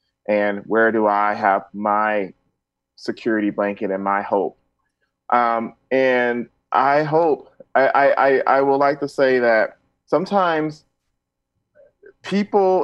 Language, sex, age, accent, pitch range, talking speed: English, male, 30-49, American, 110-130 Hz, 115 wpm